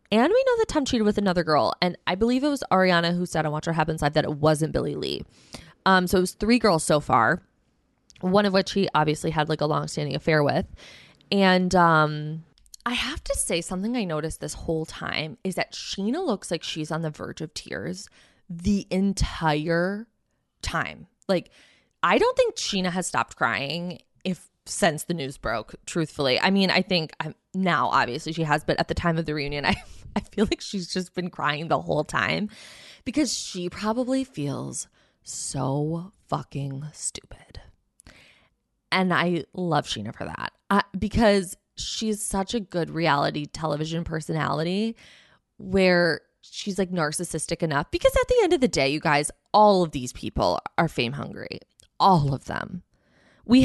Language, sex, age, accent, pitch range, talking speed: English, female, 20-39, American, 155-200 Hz, 175 wpm